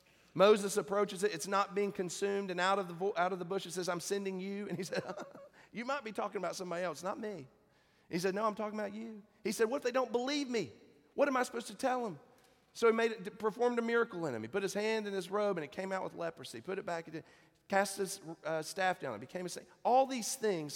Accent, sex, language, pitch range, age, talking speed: American, male, English, 180-215 Hz, 40-59, 280 wpm